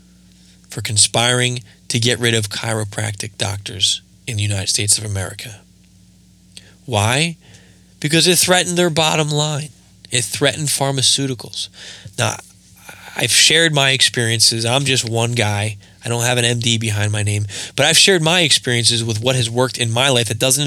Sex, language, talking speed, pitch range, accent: male, English, 160 wpm, 105-125 Hz, American